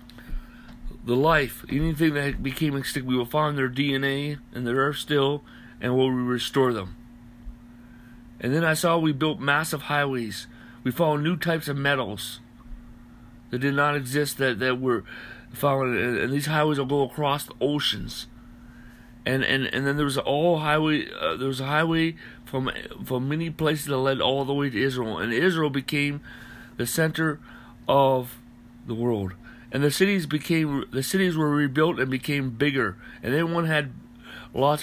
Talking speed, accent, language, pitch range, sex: 170 wpm, American, English, 120-150 Hz, male